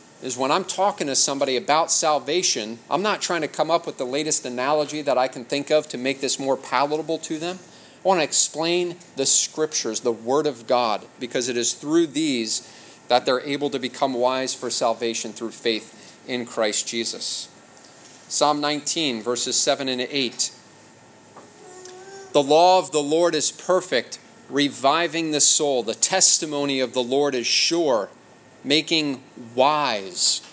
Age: 30-49